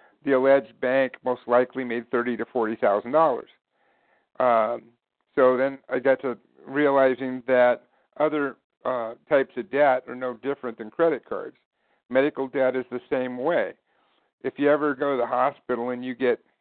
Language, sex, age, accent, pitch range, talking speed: English, male, 60-79, American, 130-175 Hz, 165 wpm